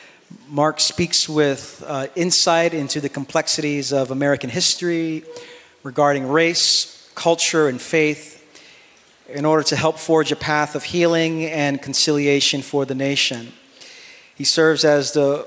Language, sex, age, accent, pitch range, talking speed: English, male, 40-59, American, 135-155 Hz, 130 wpm